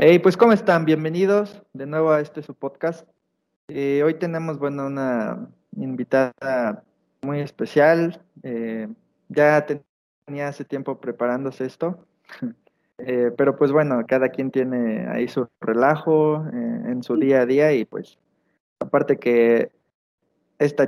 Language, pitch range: Spanish, 125-160 Hz